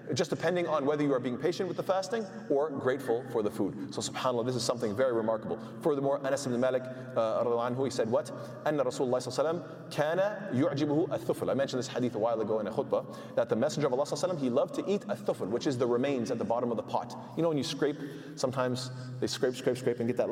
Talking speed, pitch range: 220 wpm, 130-165 Hz